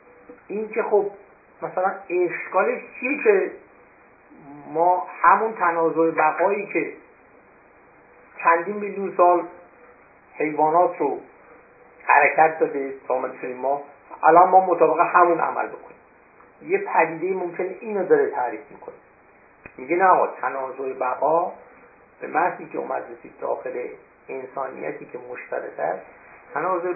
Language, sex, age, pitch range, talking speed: Persian, male, 50-69, 140-205 Hz, 110 wpm